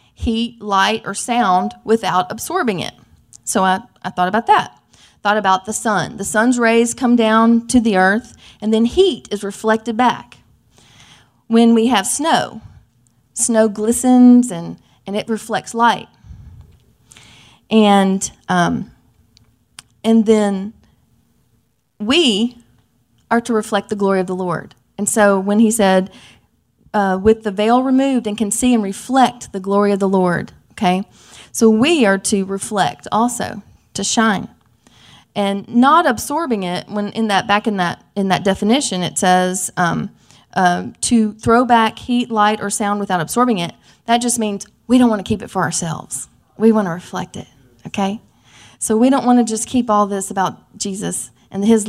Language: English